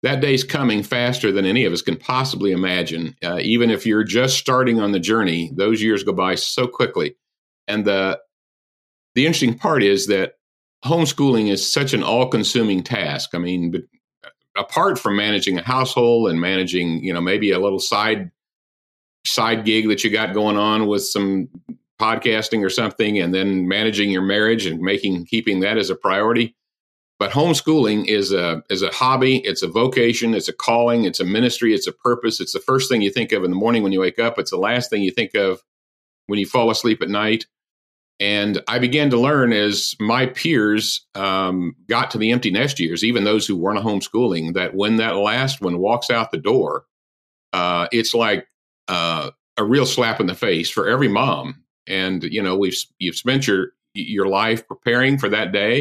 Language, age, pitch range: English, 50-69, 95-120 Hz